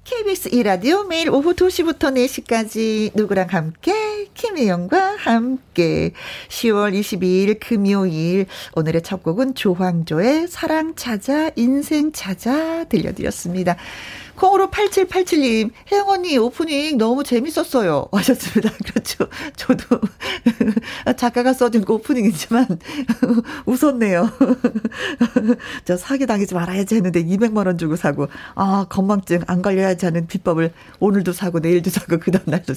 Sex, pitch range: female, 185-265 Hz